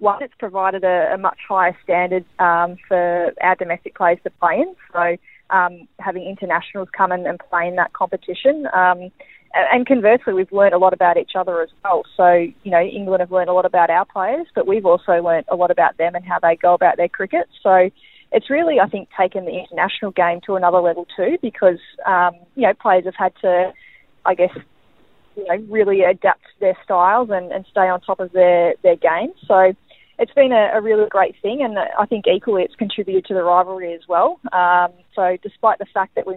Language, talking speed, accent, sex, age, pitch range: English, 210 wpm, Australian, female, 20-39, 180-215 Hz